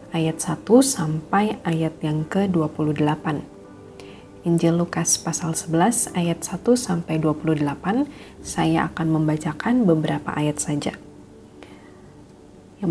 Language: Indonesian